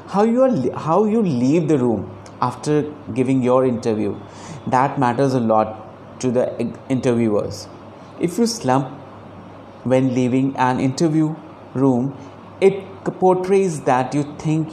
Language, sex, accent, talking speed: Hindi, male, native, 130 wpm